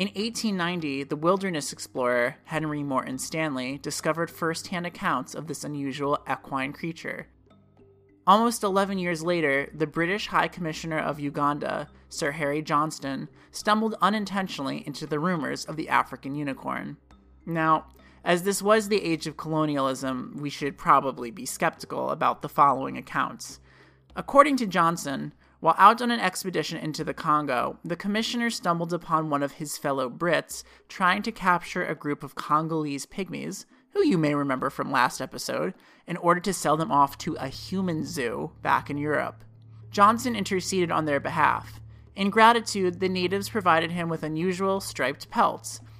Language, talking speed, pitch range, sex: English, 155 wpm, 140-190 Hz, male